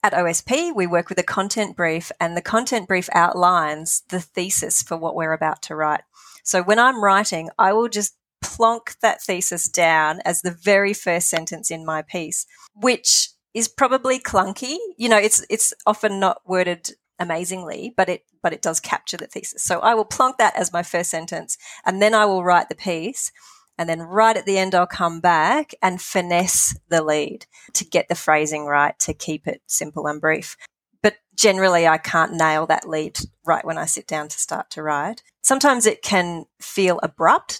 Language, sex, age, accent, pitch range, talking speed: English, female, 30-49, Australian, 170-215 Hz, 195 wpm